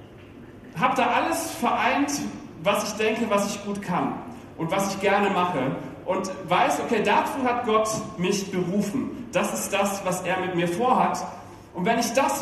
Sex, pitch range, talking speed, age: male, 155-235 Hz, 175 wpm, 40-59